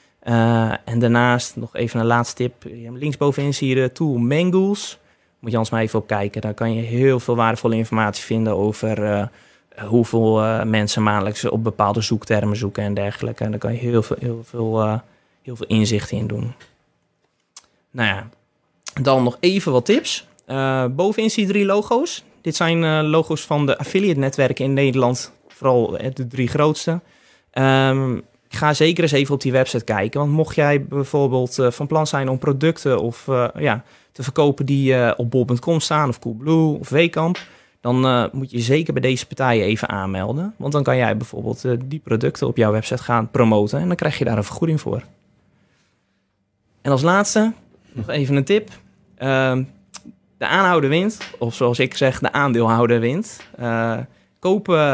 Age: 20-39